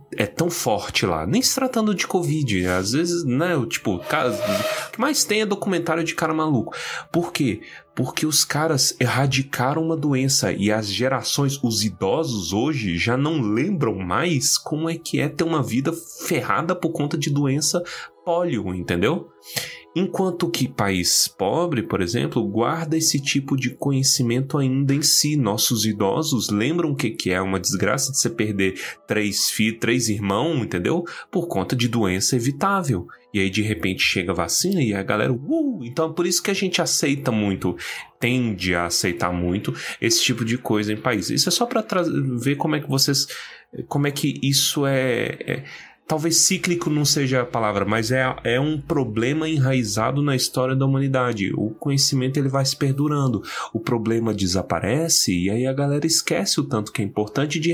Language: Portuguese